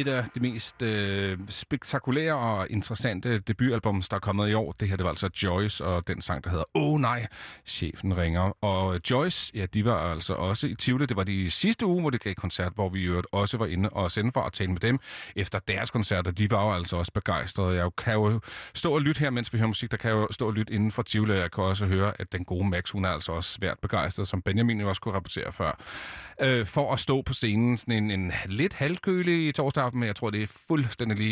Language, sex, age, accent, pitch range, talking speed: Danish, male, 40-59, native, 95-125 Hz, 255 wpm